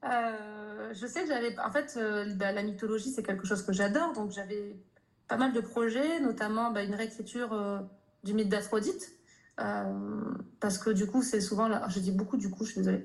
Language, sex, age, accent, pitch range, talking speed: French, female, 20-39, French, 200-235 Hz, 215 wpm